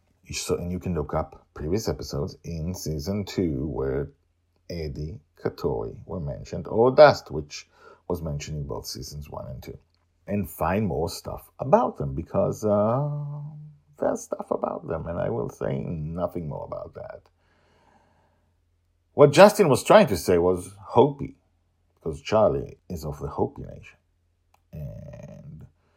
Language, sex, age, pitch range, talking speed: English, male, 50-69, 80-100 Hz, 145 wpm